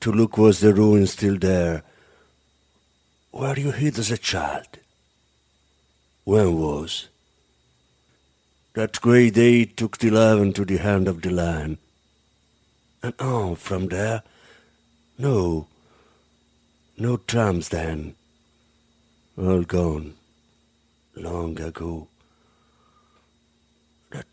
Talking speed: 100 wpm